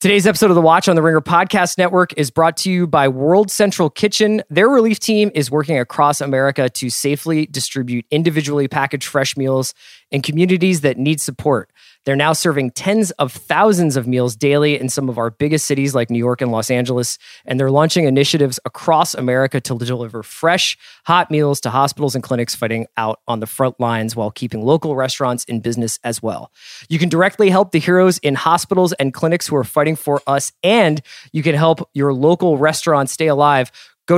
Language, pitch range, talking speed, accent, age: English, 130-165 Hz, 195 wpm, American, 20-39